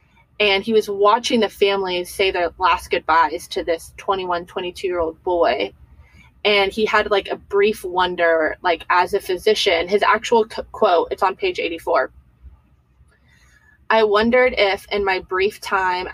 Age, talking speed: 20-39, 155 wpm